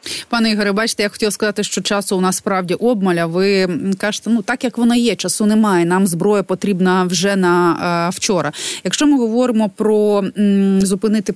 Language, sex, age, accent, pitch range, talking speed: Ukrainian, female, 20-39, native, 185-220 Hz, 170 wpm